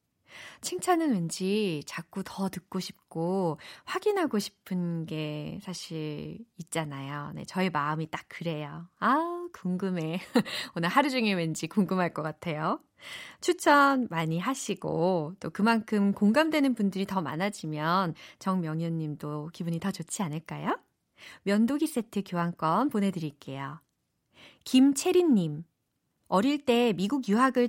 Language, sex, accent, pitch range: Korean, female, native, 170-270 Hz